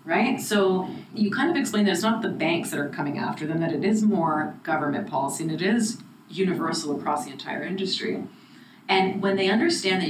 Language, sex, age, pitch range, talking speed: English, female, 30-49, 185-225 Hz, 210 wpm